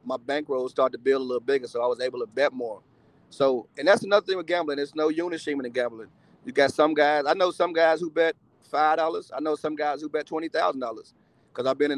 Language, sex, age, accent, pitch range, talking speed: English, male, 30-49, American, 140-170 Hz, 260 wpm